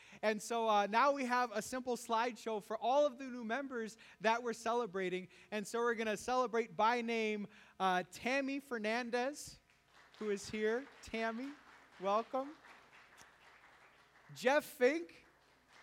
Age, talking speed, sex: 30-49, 135 wpm, male